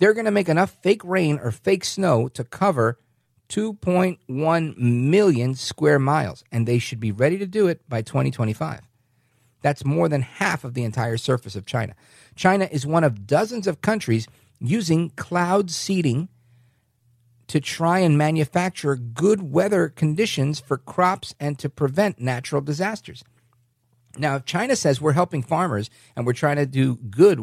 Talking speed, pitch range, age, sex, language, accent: 160 wpm, 120-170 Hz, 50-69, male, English, American